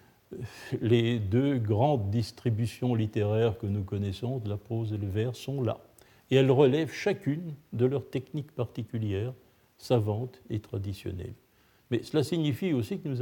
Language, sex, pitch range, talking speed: French, male, 105-135 Hz, 150 wpm